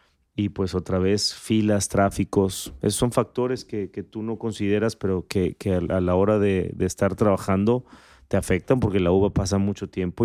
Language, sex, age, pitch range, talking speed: Spanish, male, 30-49, 95-105 Hz, 185 wpm